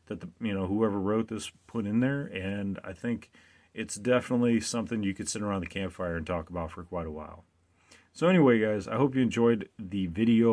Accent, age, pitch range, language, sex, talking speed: American, 30-49, 85-115 Hz, English, male, 210 wpm